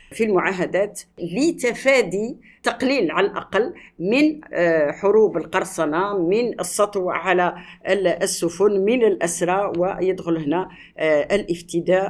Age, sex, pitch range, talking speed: 50-69, female, 170-225 Hz, 90 wpm